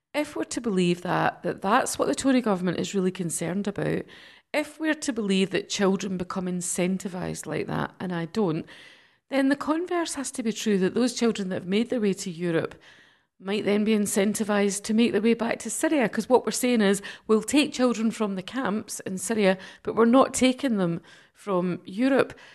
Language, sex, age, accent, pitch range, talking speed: English, female, 40-59, British, 180-230 Hz, 200 wpm